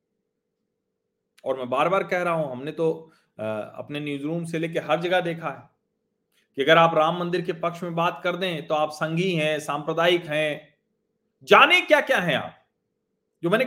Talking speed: 185 wpm